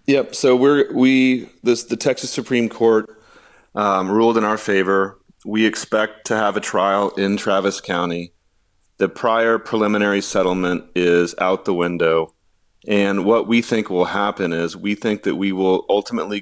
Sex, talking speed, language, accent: male, 160 wpm, English, American